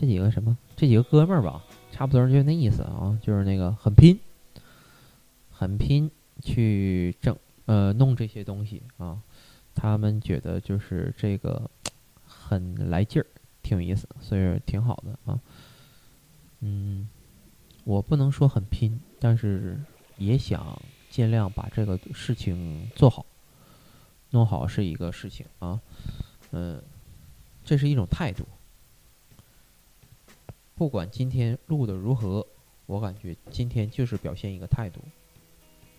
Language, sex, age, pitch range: Chinese, male, 20-39, 100-130 Hz